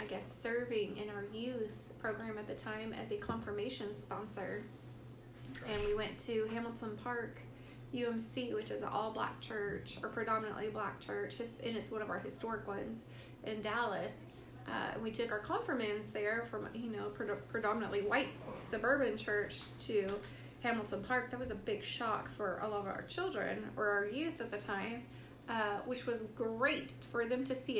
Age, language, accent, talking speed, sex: 30-49, English, American, 175 wpm, female